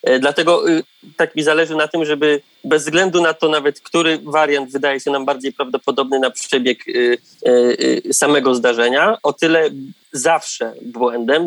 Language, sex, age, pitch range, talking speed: Polish, male, 20-39, 130-165 Hz, 140 wpm